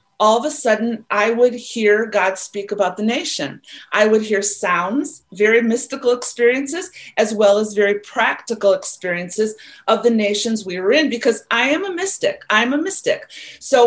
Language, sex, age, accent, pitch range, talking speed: English, female, 40-59, American, 210-270 Hz, 175 wpm